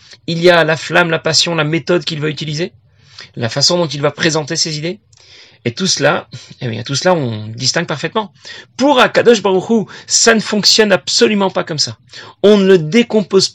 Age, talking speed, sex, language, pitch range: 40-59, 195 wpm, male, French, 130-185 Hz